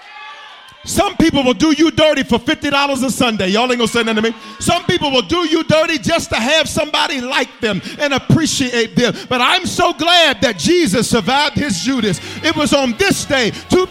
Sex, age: male, 50-69